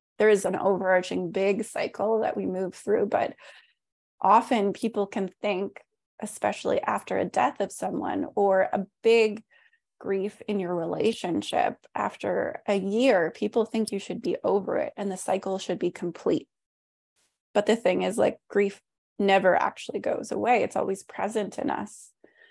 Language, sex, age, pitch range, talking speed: English, female, 20-39, 190-225 Hz, 155 wpm